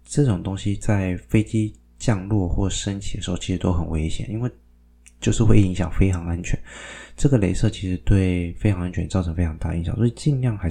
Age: 20-39